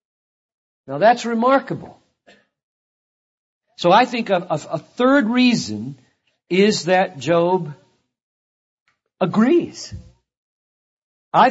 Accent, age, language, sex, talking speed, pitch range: American, 50-69, English, male, 85 wpm, 135-225 Hz